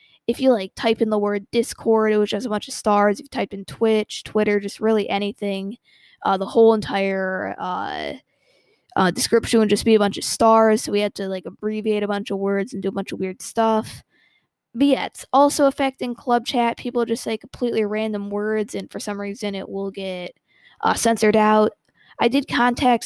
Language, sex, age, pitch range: English, female, 20-39, 205-240 Hz